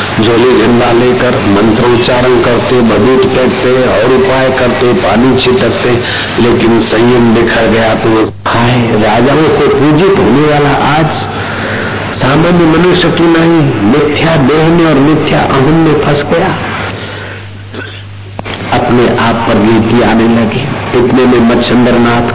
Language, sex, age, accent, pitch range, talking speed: Hindi, male, 60-79, native, 105-125 Hz, 125 wpm